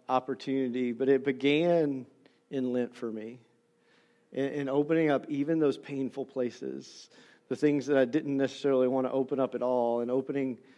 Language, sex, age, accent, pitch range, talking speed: English, male, 40-59, American, 135-170 Hz, 160 wpm